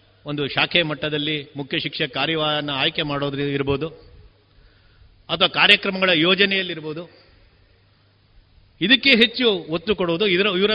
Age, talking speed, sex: 50-69, 100 wpm, male